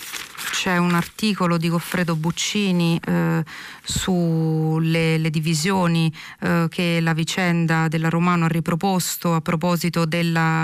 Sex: female